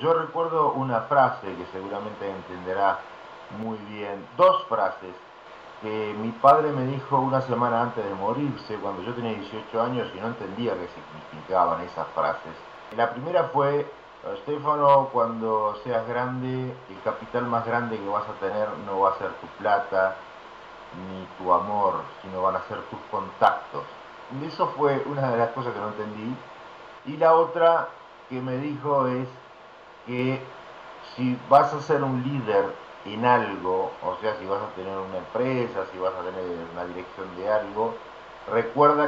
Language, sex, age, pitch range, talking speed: Spanish, male, 50-69, 105-135 Hz, 165 wpm